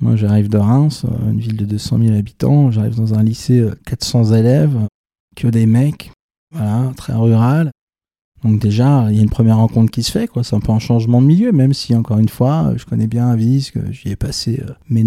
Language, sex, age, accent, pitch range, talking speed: French, male, 20-39, French, 110-125 Hz, 225 wpm